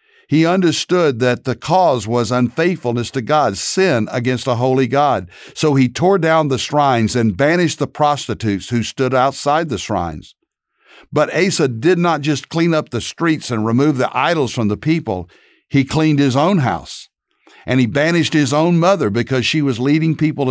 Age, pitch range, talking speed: 60-79, 110-145 Hz, 180 wpm